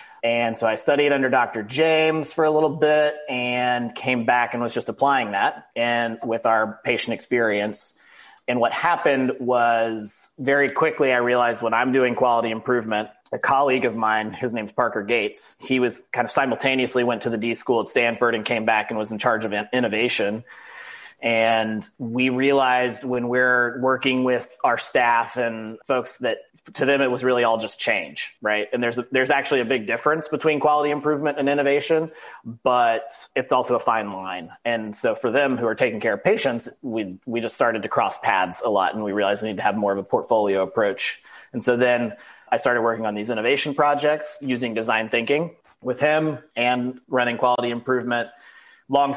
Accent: American